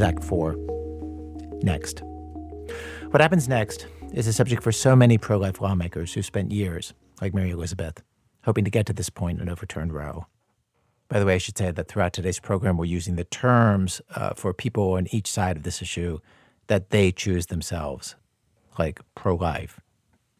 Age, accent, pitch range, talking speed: 50-69, American, 90-115 Hz, 170 wpm